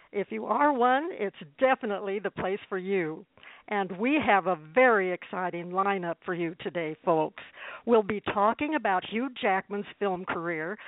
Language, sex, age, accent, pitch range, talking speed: English, female, 60-79, American, 185-230 Hz, 160 wpm